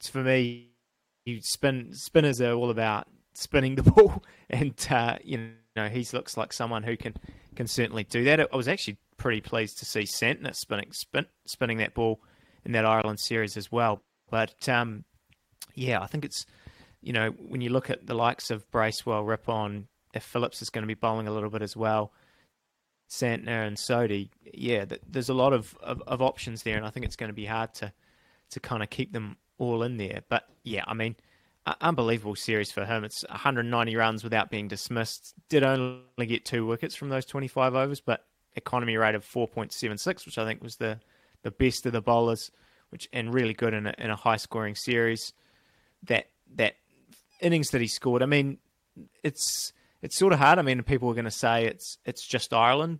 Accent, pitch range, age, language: Australian, 110-130 Hz, 20-39, English